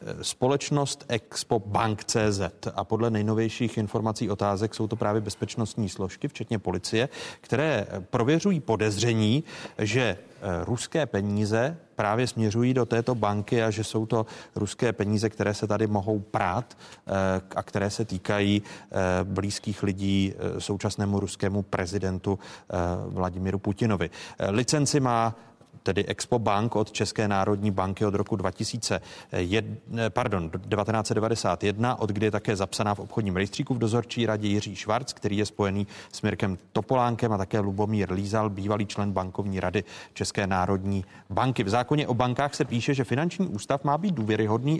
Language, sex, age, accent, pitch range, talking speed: Czech, male, 30-49, native, 100-120 Hz, 140 wpm